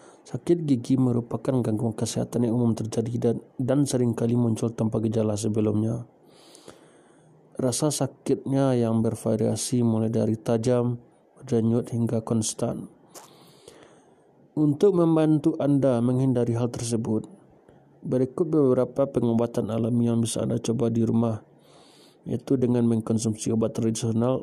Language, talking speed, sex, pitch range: Indonesian, 115 wpm, male, 115-125 Hz